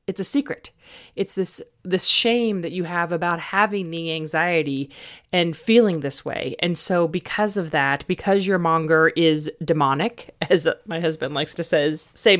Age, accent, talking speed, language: 40-59, American, 170 wpm, English